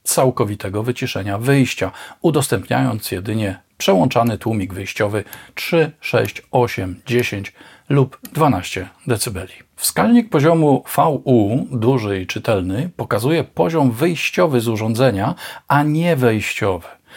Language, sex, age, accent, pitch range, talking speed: Polish, male, 40-59, native, 105-145 Hz, 100 wpm